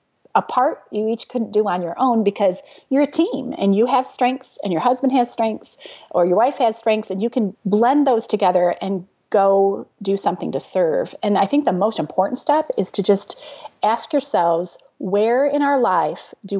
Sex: female